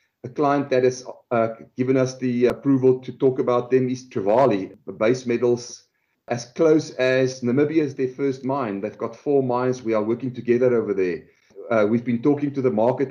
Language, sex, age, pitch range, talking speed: English, male, 40-59, 120-140 Hz, 190 wpm